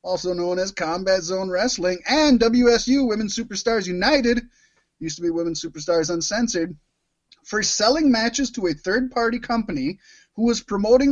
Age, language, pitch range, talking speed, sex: 30-49, English, 175-240 Hz, 145 wpm, male